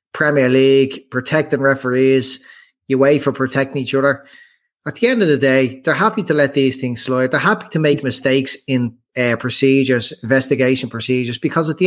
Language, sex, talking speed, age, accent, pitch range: English, male, 180 wpm, 30-49, Irish, 125-150 Hz